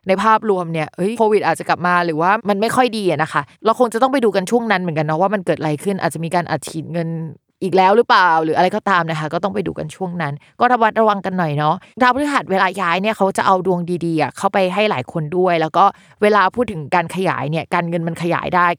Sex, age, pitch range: female, 20-39, 170-210 Hz